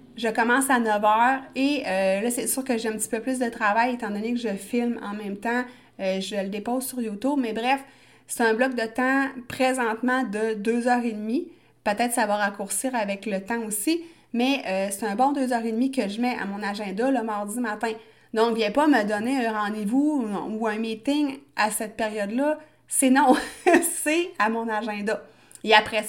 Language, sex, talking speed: French, female, 200 wpm